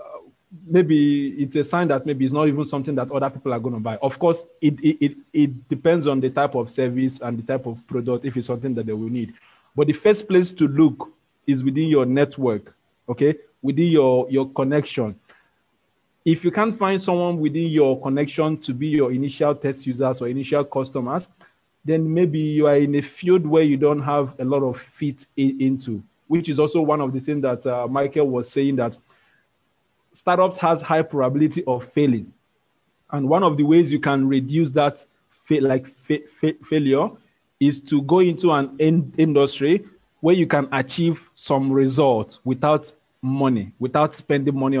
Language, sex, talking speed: English, male, 185 wpm